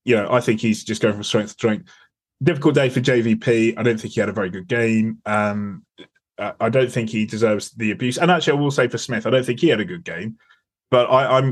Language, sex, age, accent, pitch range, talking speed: English, male, 20-39, British, 110-125 Hz, 260 wpm